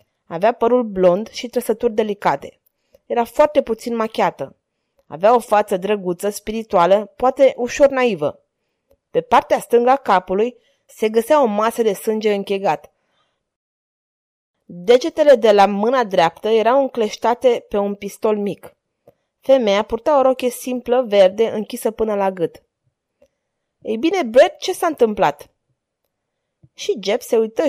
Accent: native